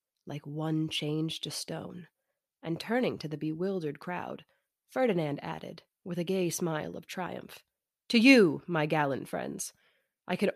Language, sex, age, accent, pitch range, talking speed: English, female, 30-49, American, 165-205 Hz, 150 wpm